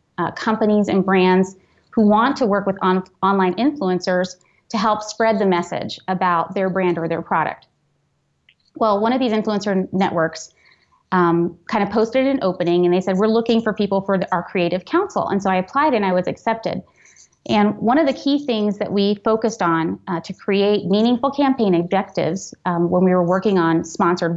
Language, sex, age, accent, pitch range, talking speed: English, female, 30-49, American, 185-225 Hz, 185 wpm